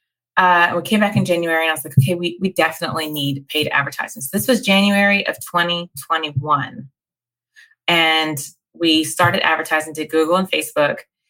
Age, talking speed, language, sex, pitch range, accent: 30-49, 165 wpm, English, female, 150-180 Hz, American